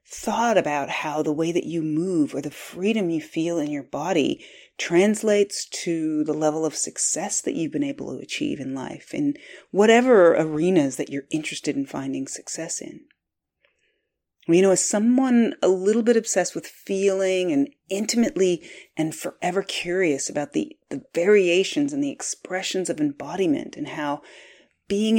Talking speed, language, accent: 160 wpm, English, American